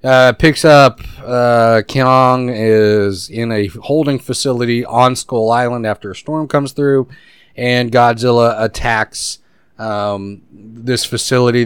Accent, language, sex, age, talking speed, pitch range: American, English, male, 30-49, 125 wpm, 110-135 Hz